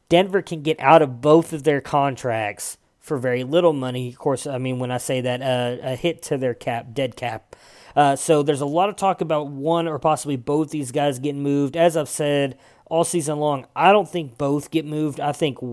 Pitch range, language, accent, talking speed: 130-155 Hz, English, American, 225 wpm